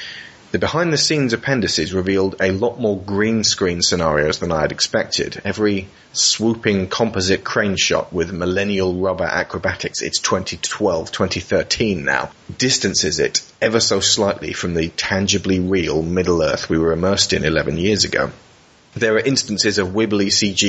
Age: 30-49